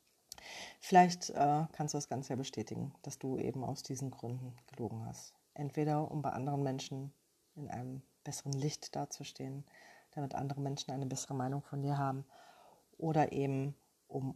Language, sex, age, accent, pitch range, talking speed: German, female, 40-59, German, 135-155 Hz, 160 wpm